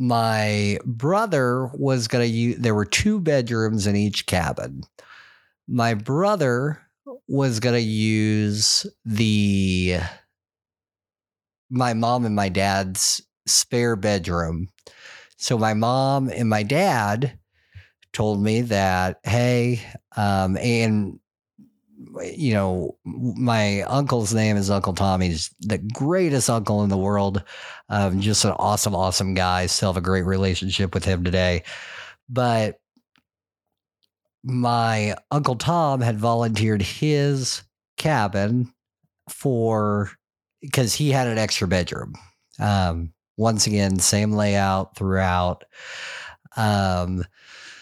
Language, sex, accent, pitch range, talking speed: English, male, American, 95-120 Hz, 115 wpm